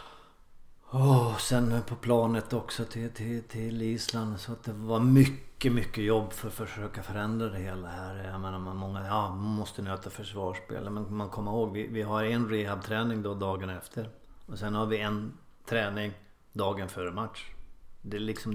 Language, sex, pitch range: Swedish, male, 105-115 Hz